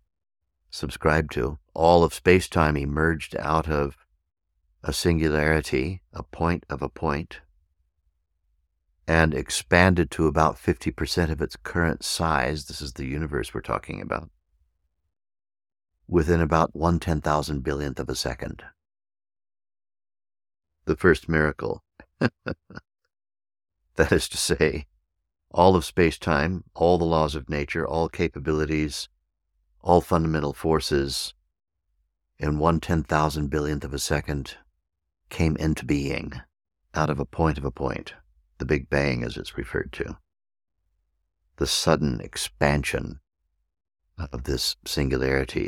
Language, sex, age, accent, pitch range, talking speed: English, male, 60-79, American, 70-85 Hz, 125 wpm